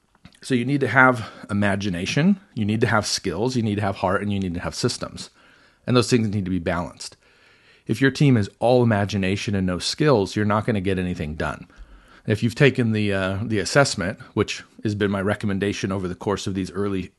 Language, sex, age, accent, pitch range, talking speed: English, male, 40-59, American, 100-120 Hz, 225 wpm